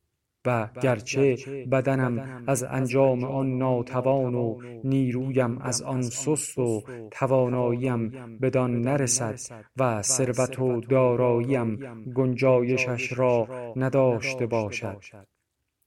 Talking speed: 90 wpm